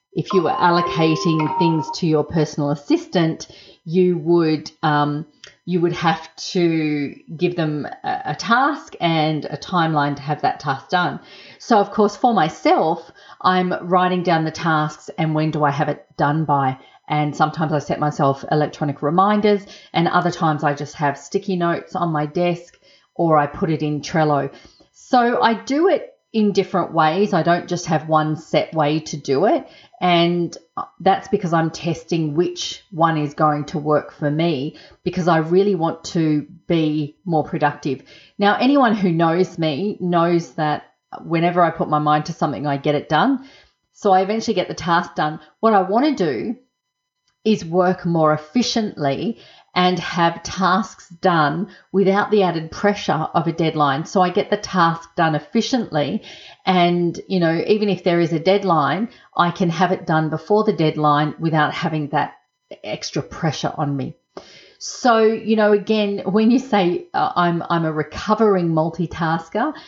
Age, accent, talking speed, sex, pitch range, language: 40-59, Australian, 170 wpm, female, 155-190 Hz, English